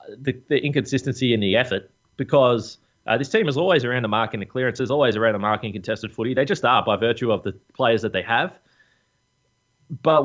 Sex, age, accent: male, 20-39, Australian